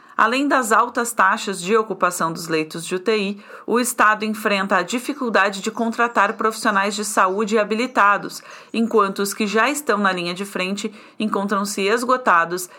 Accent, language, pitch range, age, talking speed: Brazilian, Portuguese, 190-230 Hz, 40-59, 150 wpm